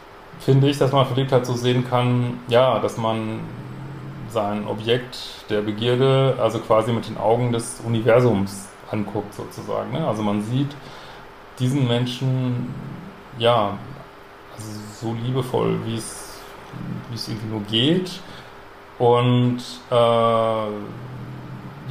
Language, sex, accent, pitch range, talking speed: German, male, German, 110-125 Hz, 115 wpm